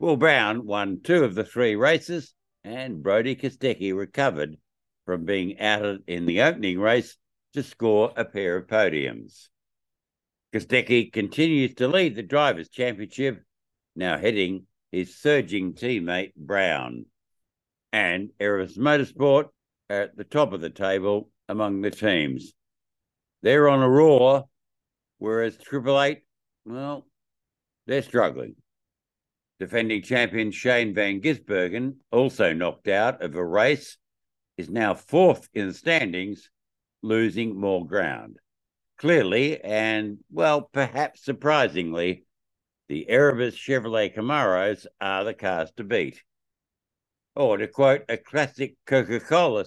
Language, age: English, 60-79